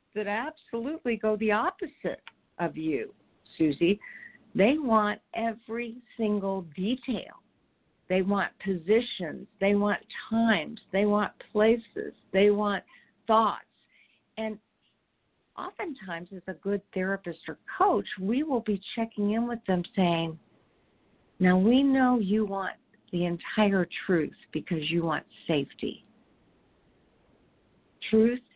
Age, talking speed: 50-69, 115 wpm